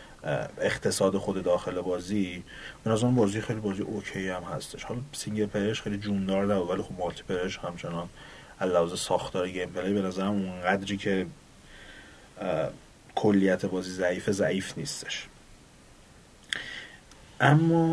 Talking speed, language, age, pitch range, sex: 125 wpm, Persian, 30-49, 90-110 Hz, male